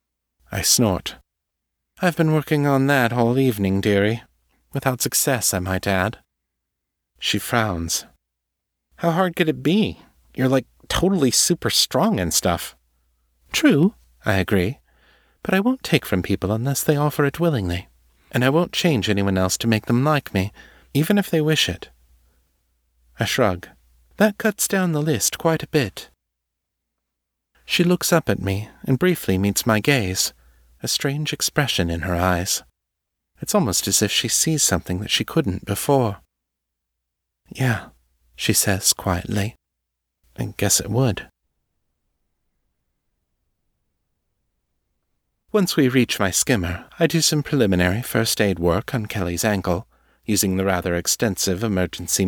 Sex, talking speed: male, 140 wpm